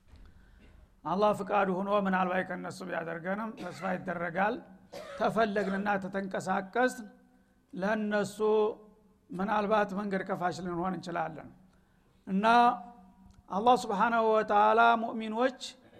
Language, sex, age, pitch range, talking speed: Amharic, male, 60-79, 190-245 Hz, 80 wpm